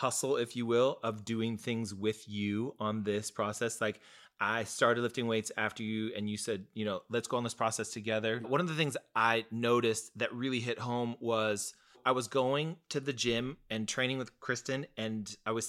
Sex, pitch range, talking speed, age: male, 110-135 Hz, 205 wpm, 30-49